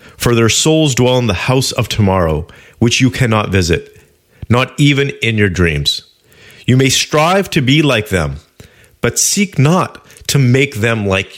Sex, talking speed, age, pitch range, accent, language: male, 170 wpm, 30-49, 100-130 Hz, American, English